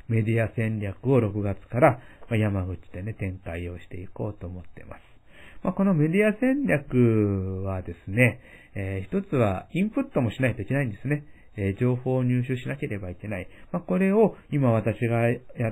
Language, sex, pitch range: Japanese, male, 100-135 Hz